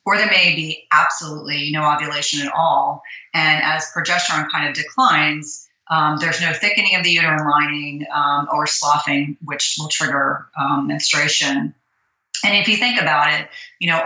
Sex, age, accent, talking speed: female, 30-49, American, 165 wpm